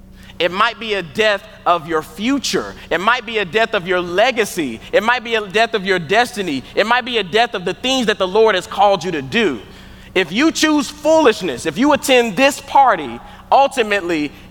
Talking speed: 205 wpm